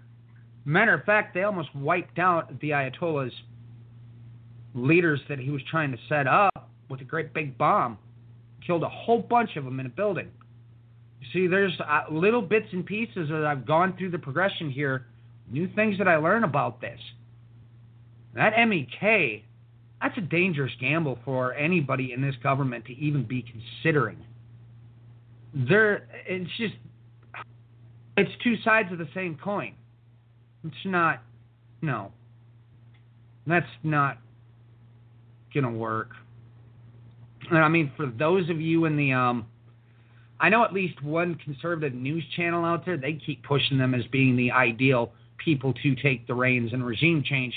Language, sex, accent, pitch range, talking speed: English, male, American, 115-170 Hz, 155 wpm